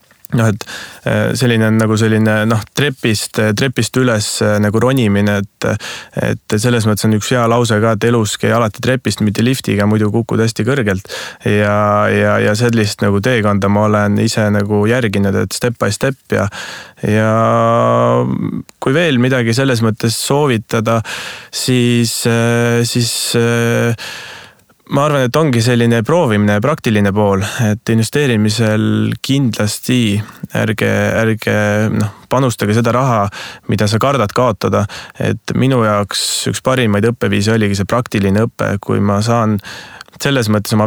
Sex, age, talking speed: male, 20-39, 135 wpm